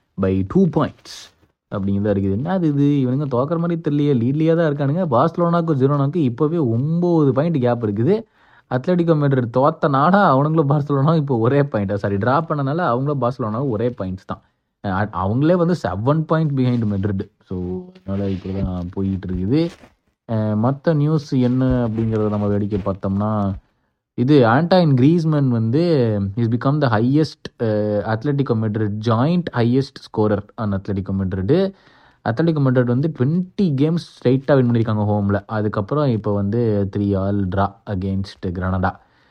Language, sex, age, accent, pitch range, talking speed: Tamil, male, 20-39, native, 105-155 Hz, 130 wpm